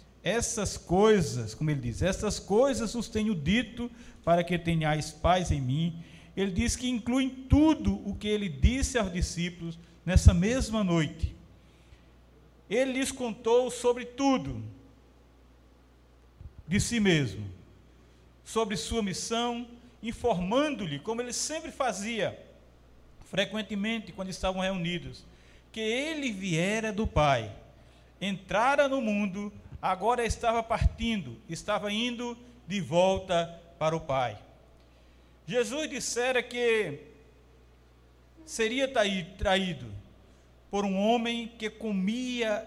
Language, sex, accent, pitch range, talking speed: Portuguese, male, Brazilian, 155-235 Hz, 110 wpm